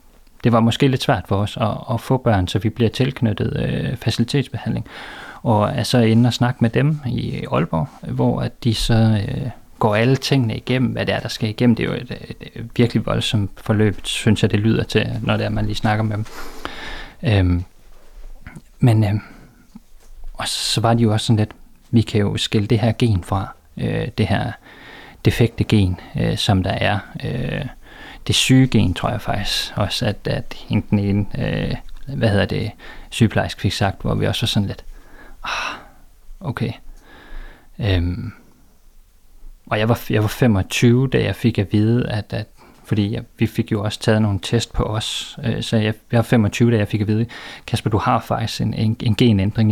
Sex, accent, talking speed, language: male, native, 195 wpm, Danish